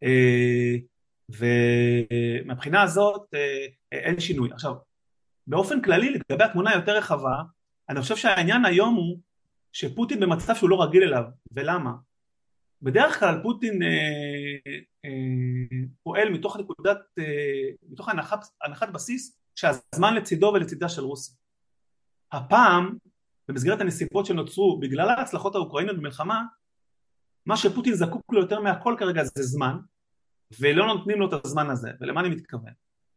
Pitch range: 130-185 Hz